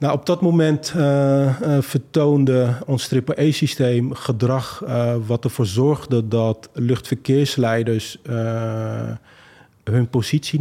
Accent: Dutch